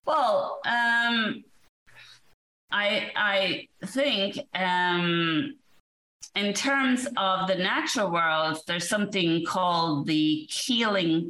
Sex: female